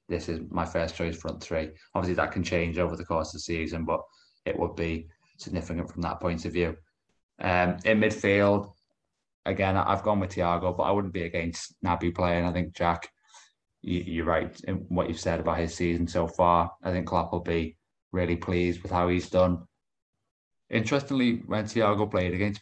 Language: English